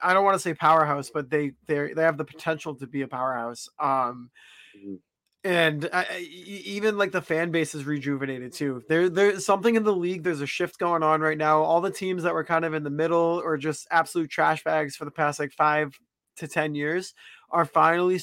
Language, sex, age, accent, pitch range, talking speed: English, male, 20-39, American, 145-165 Hz, 220 wpm